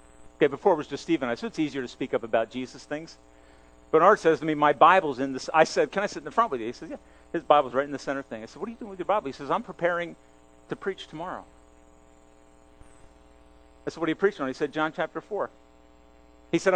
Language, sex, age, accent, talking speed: English, male, 50-69, American, 270 wpm